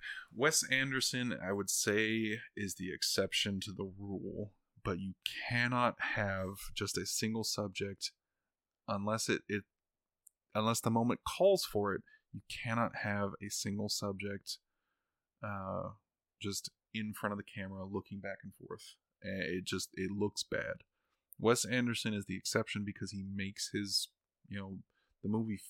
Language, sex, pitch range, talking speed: English, male, 100-110 Hz, 145 wpm